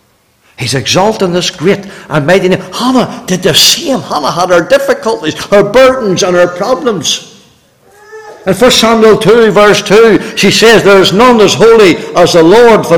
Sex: male